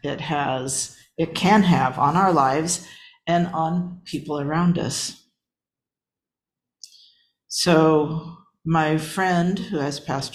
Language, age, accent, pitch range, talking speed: English, 50-69, American, 135-165 Hz, 110 wpm